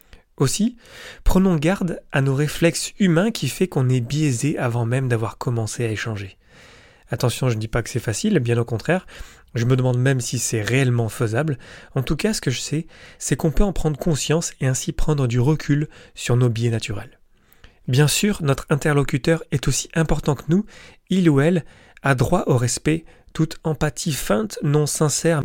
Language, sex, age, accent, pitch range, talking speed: French, male, 30-49, French, 120-155 Hz, 190 wpm